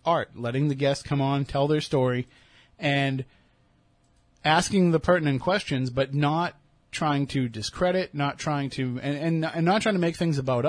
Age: 30-49